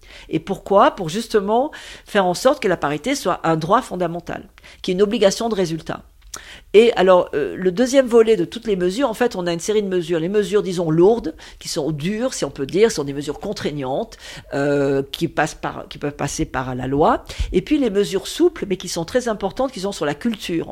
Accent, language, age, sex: French, French, 50-69, female